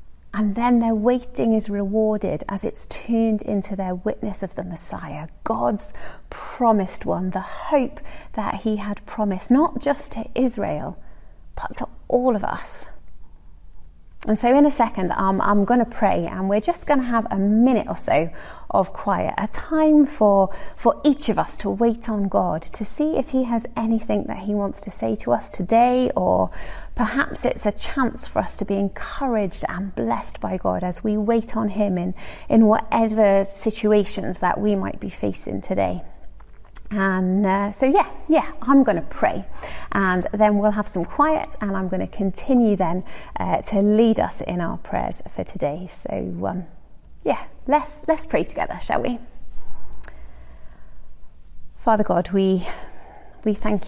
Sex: female